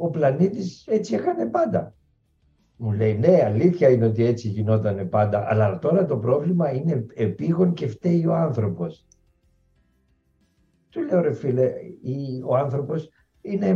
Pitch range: 105-145 Hz